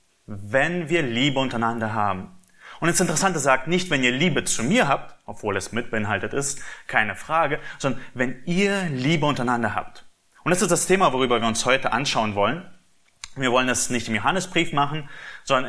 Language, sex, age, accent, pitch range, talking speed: German, male, 30-49, German, 115-155 Hz, 180 wpm